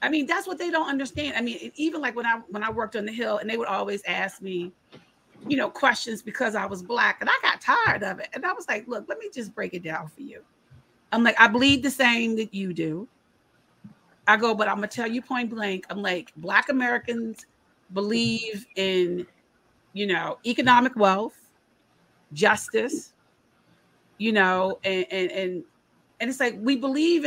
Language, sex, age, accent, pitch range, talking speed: English, female, 40-59, American, 215-280 Hz, 200 wpm